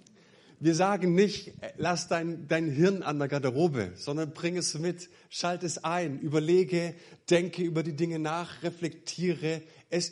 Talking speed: 150 wpm